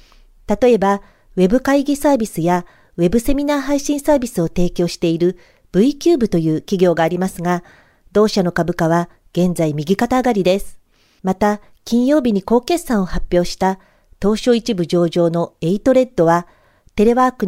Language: Japanese